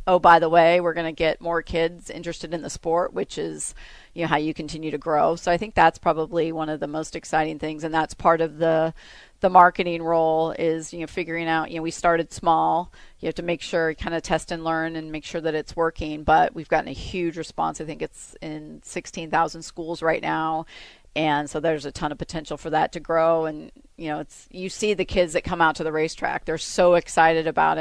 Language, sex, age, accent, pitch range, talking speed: English, female, 40-59, American, 155-175 Hz, 240 wpm